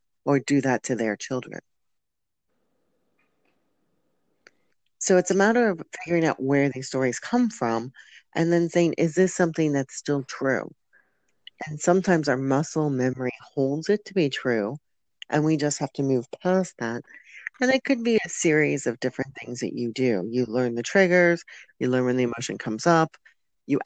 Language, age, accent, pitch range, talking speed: English, 40-59, American, 125-160 Hz, 175 wpm